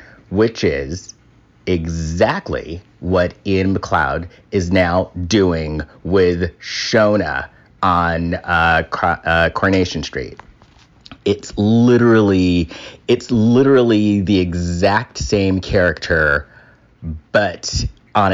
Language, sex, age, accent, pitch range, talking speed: English, male, 30-49, American, 90-115 Hz, 90 wpm